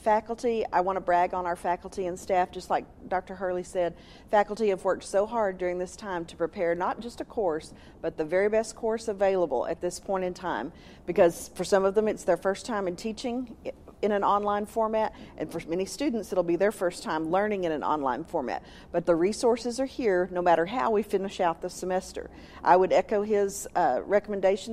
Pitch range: 175-210 Hz